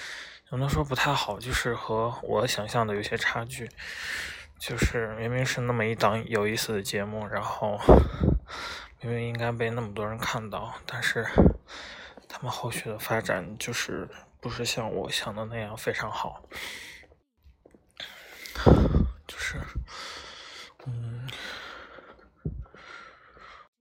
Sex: male